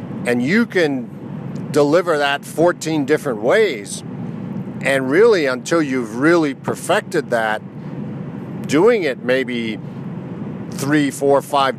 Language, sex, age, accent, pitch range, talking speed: English, male, 50-69, American, 130-175 Hz, 105 wpm